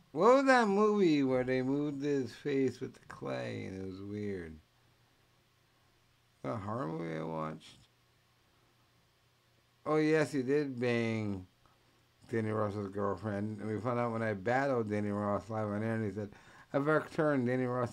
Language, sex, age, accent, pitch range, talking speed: English, male, 60-79, American, 105-145 Hz, 165 wpm